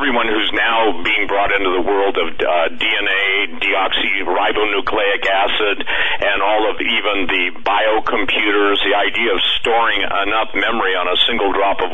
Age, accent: 50-69, American